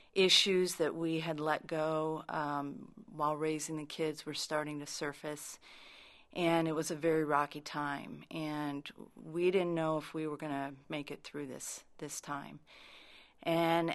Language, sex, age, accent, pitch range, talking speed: English, female, 40-59, American, 155-175 Hz, 165 wpm